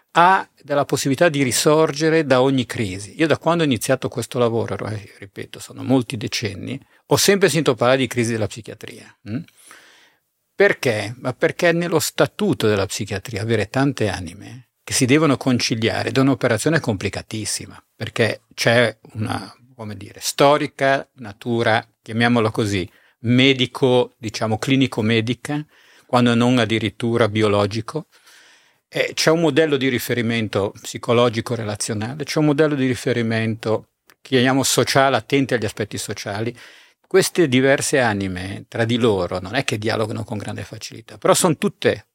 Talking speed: 135 wpm